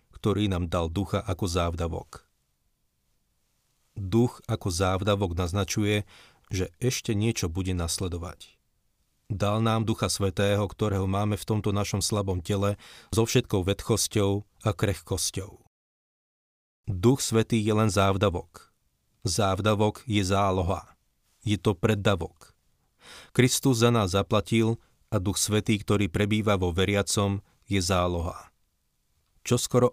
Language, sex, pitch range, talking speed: Slovak, male, 90-110 Hz, 110 wpm